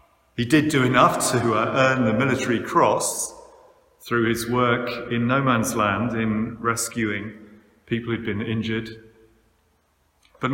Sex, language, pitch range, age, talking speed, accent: male, English, 115-155 Hz, 40-59, 130 wpm, British